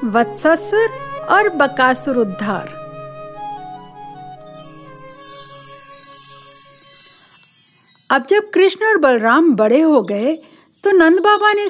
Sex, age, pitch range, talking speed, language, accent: female, 50-69, 225-335 Hz, 80 wpm, Hindi, native